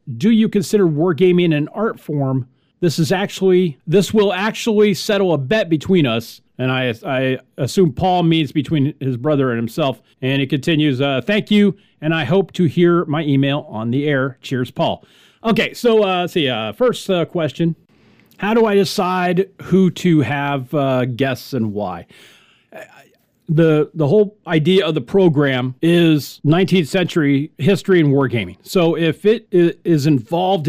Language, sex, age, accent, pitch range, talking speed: English, male, 40-59, American, 145-195 Hz, 165 wpm